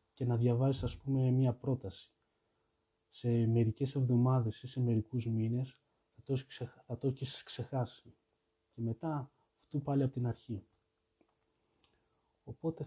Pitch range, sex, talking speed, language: 110-130 Hz, male, 120 wpm, Greek